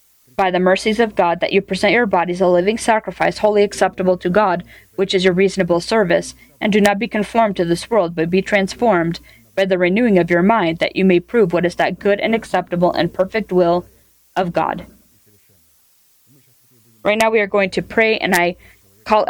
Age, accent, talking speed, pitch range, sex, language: 20-39, American, 200 wpm, 170-205 Hz, female, English